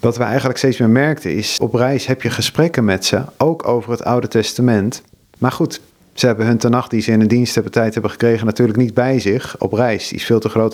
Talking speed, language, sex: 240 wpm, Dutch, male